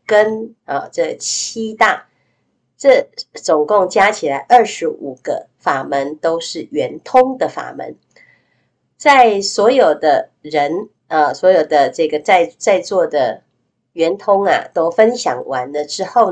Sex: female